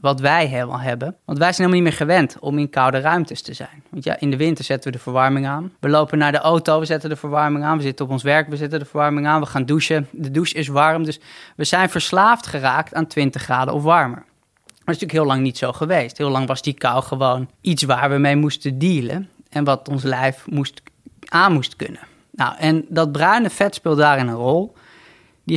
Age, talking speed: 20-39, 235 wpm